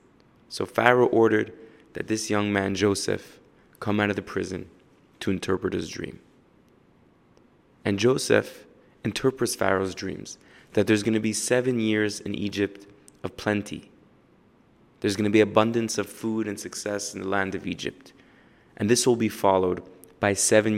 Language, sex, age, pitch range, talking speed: English, male, 20-39, 100-110 Hz, 155 wpm